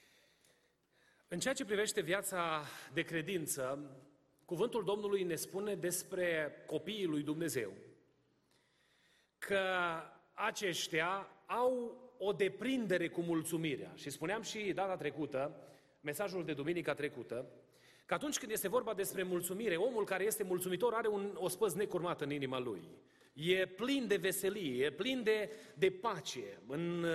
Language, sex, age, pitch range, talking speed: Romanian, male, 30-49, 170-235 Hz, 130 wpm